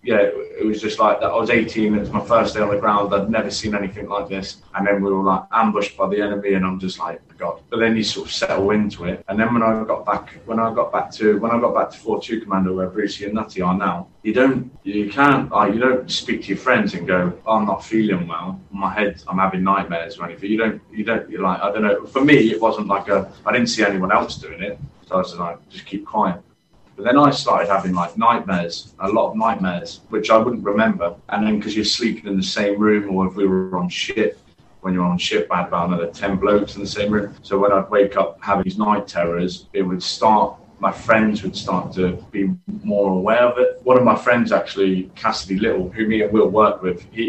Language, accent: English, British